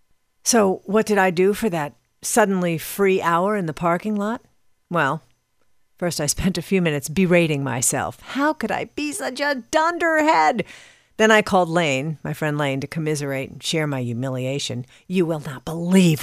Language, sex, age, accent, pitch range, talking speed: English, female, 50-69, American, 145-215 Hz, 175 wpm